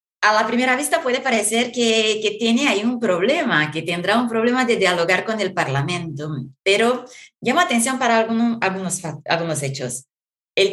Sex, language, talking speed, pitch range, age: female, Spanish, 170 wpm, 175-245 Hz, 30-49